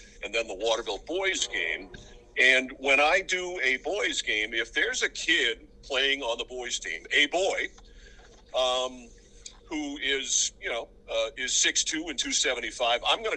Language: English